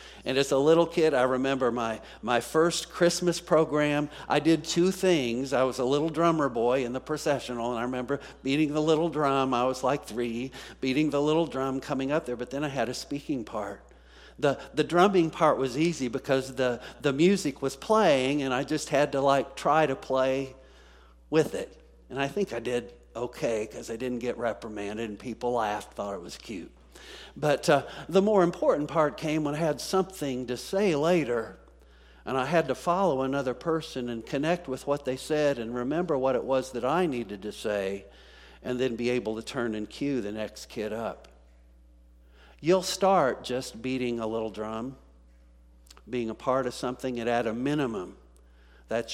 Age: 50-69